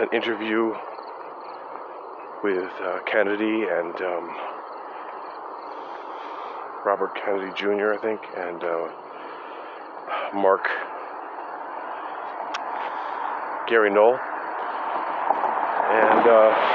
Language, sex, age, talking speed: English, male, 40-59, 70 wpm